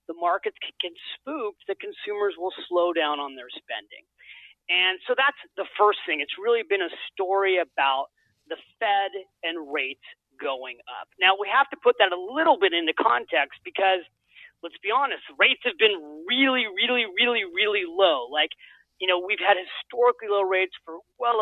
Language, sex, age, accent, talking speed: English, male, 40-59, American, 175 wpm